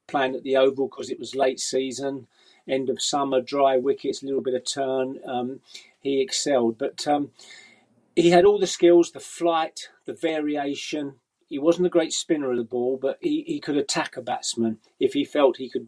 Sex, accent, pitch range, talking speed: male, British, 125-160 Hz, 200 wpm